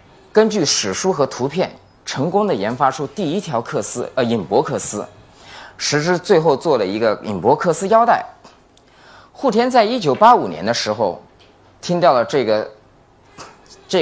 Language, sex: Chinese, male